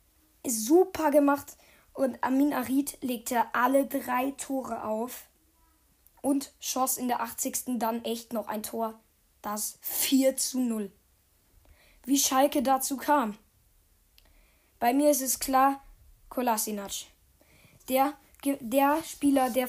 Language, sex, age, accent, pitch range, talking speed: German, female, 10-29, German, 245-290 Hz, 115 wpm